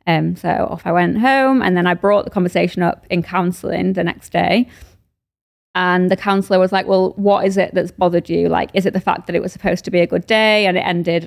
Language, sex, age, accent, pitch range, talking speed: English, female, 20-39, British, 175-200 Hz, 255 wpm